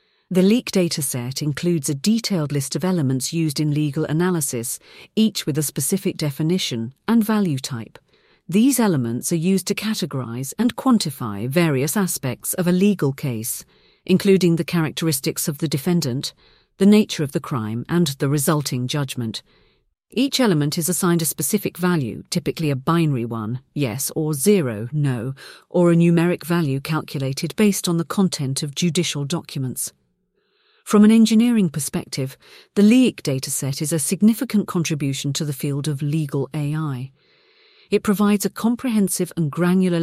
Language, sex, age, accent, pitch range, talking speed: English, female, 40-59, British, 145-190 Hz, 150 wpm